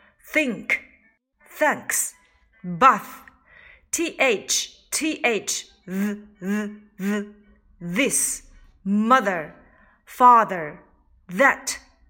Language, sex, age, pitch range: Chinese, female, 40-59, 210-270 Hz